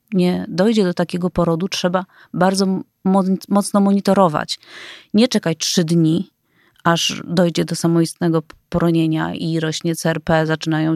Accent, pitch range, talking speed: native, 170-220 Hz, 120 wpm